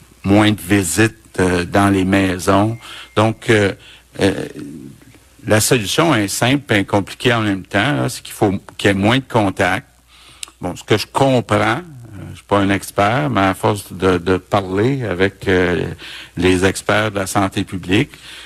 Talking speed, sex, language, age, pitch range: 175 wpm, male, French, 60-79, 95-115 Hz